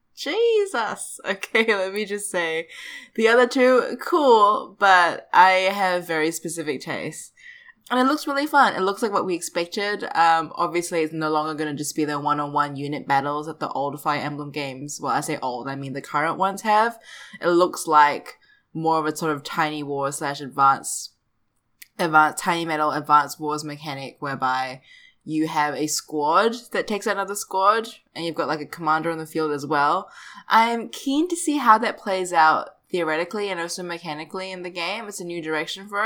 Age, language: 20-39, English